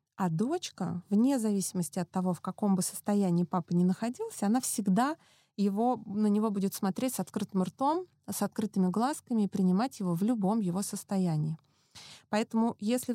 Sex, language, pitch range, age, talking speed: female, Russian, 180-225 Hz, 20-39, 160 wpm